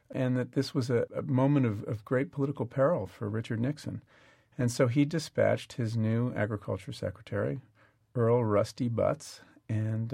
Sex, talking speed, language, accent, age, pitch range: male, 160 wpm, English, American, 40-59, 110-130 Hz